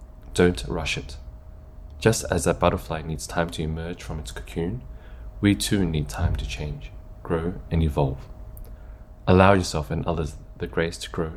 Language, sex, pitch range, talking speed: English, male, 80-95 Hz, 165 wpm